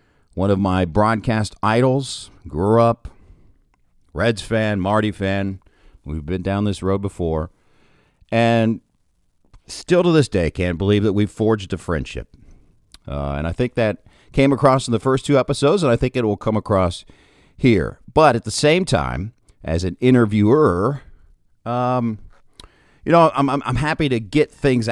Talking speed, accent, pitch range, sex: 160 wpm, American, 95-125 Hz, male